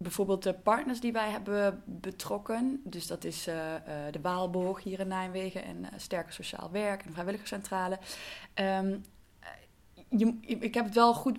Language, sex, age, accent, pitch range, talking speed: Dutch, female, 20-39, Dutch, 180-210 Hz, 165 wpm